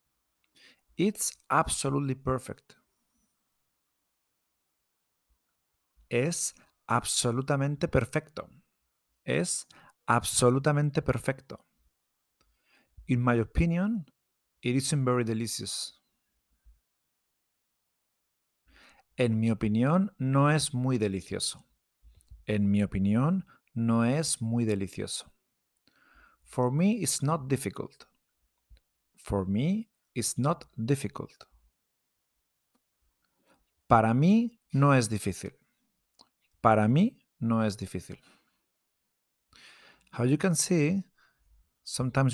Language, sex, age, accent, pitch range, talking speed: English, male, 40-59, Mexican, 105-140 Hz, 80 wpm